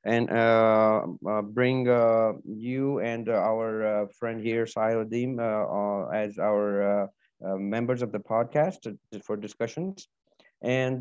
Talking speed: 140 wpm